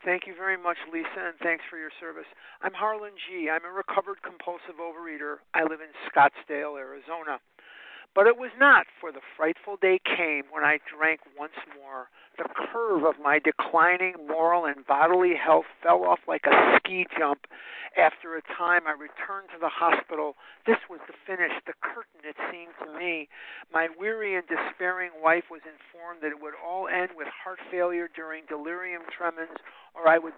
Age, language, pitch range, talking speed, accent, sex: 50-69, English, 160-190 Hz, 180 wpm, American, male